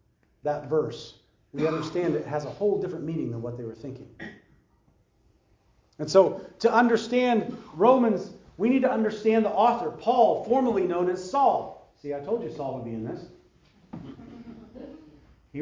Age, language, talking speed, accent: 40-59, English, 160 wpm, American